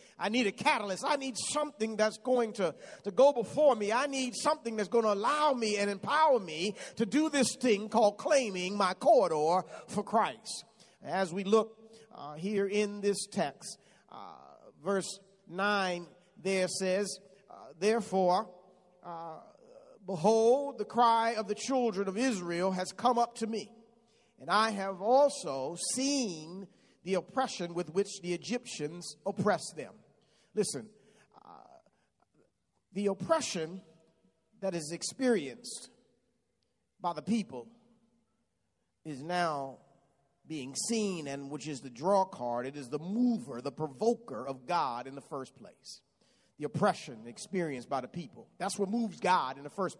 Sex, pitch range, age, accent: male, 175-230 Hz, 50-69, American